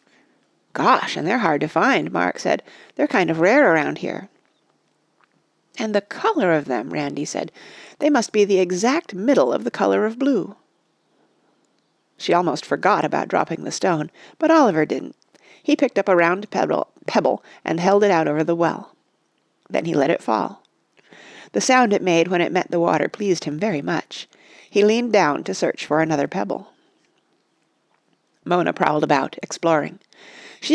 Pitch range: 180-270 Hz